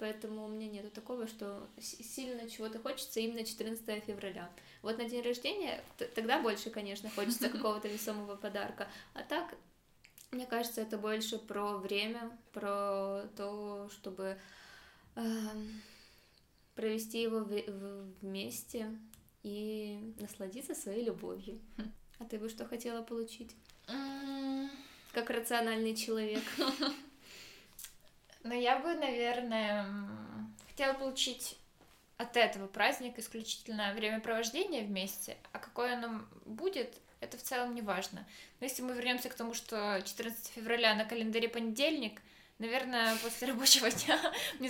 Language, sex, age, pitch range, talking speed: Russian, female, 20-39, 215-245 Hz, 120 wpm